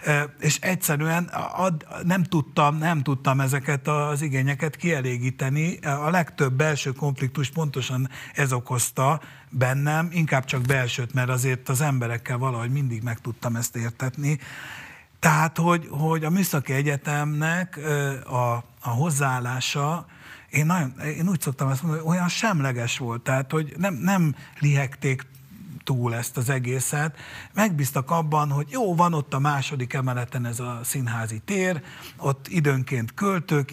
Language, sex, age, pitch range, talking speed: Hungarian, male, 60-79, 130-155 Hz, 135 wpm